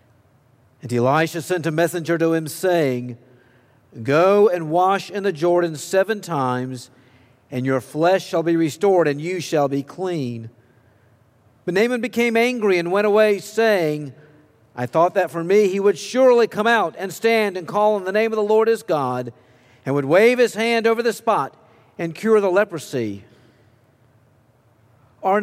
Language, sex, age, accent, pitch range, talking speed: English, male, 50-69, American, 125-205 Hz, 165 wpm